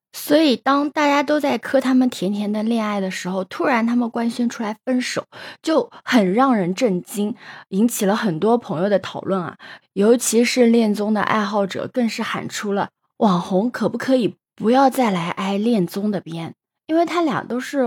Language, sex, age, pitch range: Chinese, female, 20-39, 195-295 Hz